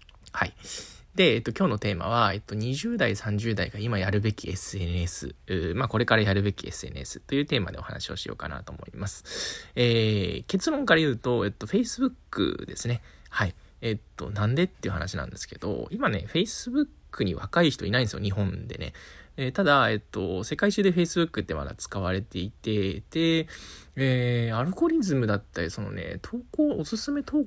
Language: Japanese